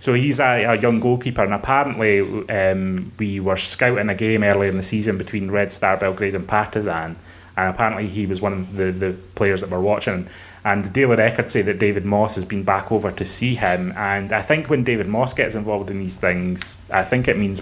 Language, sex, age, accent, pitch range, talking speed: English, male, 30-49, British, 95-105 Hz, 225 wpm